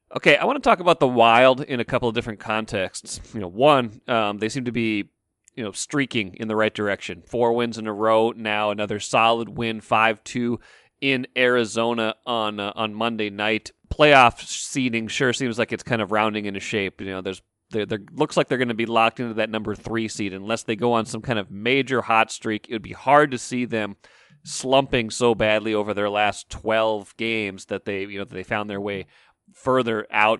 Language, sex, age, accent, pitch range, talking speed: English, male, 30-49, American, 105-120 Hz, 215 wpm